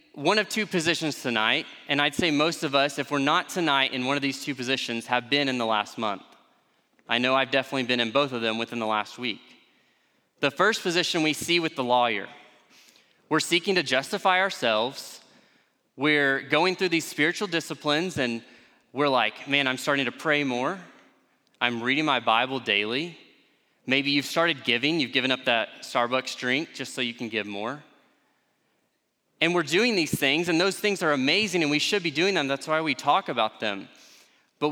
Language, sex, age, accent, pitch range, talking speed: English, male, 20-39, American, 125-170 Hz, 195 wpm